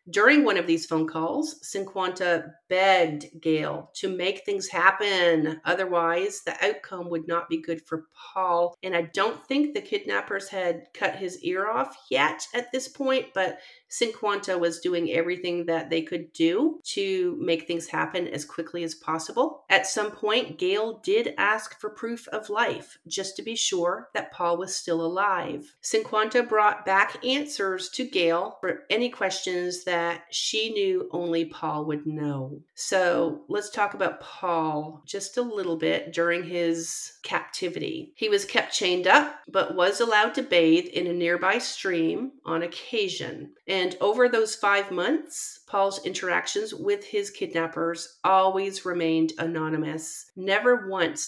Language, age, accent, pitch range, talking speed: English, 40-59, American, 170-230 Hz, 155 wpm